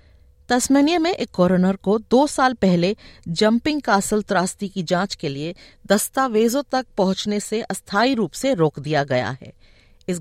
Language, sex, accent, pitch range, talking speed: Hindi, female, native, 165-240 Hz, 160 wpm